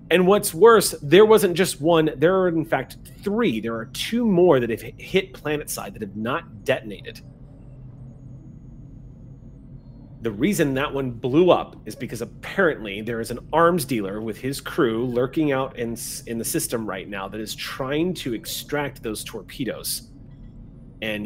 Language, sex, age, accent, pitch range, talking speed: English, male, 30-49, American, 125-165 Hz, 165 wpm